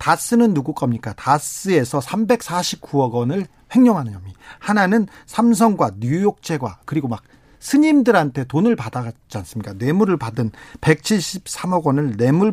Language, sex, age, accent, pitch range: Korean, male, 40-59, native, 130-195 Hz